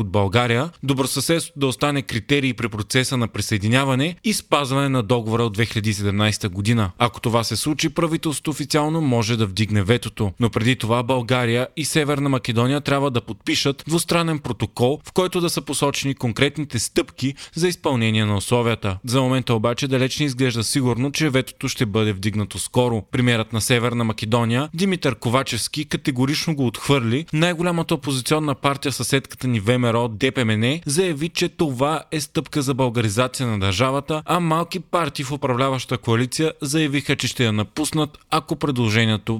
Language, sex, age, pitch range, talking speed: Bulgarian, male, 30-49, 115-145 Hz, 150 wpm